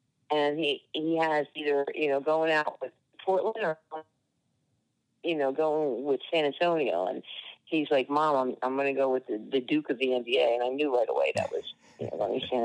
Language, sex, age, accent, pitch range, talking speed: English, female, 40-59, American, 130-155 Hz, 215 wpm